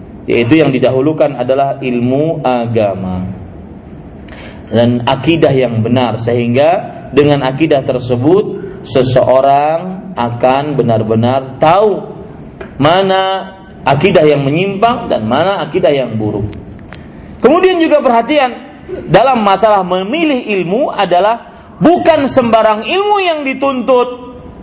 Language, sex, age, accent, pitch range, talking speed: Indonesian, male, 40-59, native, 140-220 Hz, 95 wpm